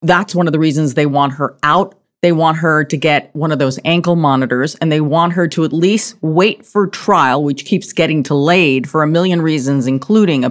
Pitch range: 145-185 Hz